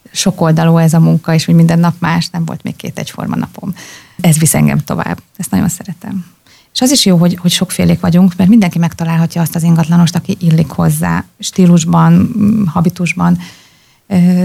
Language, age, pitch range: Hungarian, 30-49, 165-180 Hz